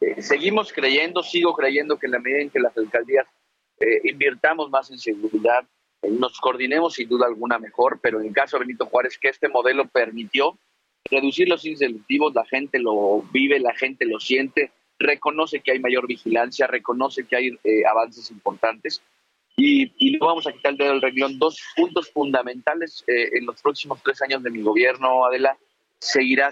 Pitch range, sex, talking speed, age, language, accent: 120-150 Hz, male, 185 wpm, 40-59, Spanish, Mexican